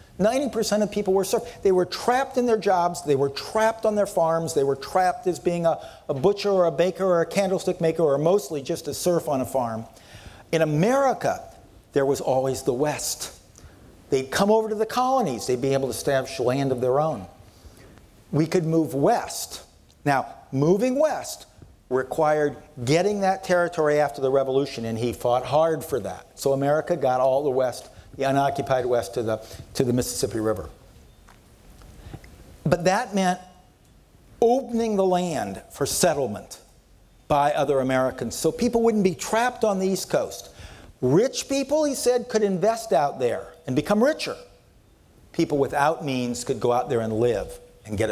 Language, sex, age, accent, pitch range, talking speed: English, male, 50-69, American, 130-195 Hz, 170 wpm